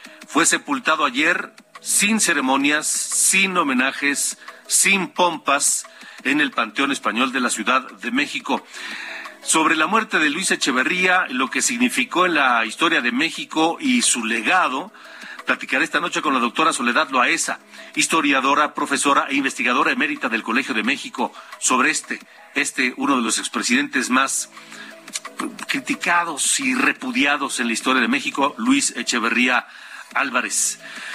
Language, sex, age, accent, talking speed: Spanish, male, 50-69, Mexican, 135 wpm